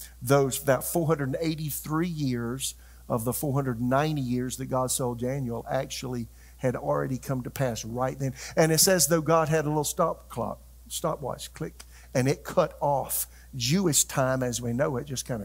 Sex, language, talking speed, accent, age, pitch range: male, English, 170 wpm, American, 50-69, 120-145 Hz